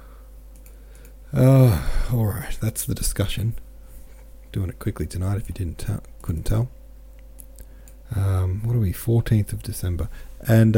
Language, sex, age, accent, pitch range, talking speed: English, male, 40-59, Australian, 90-110 Hz, 140 wpm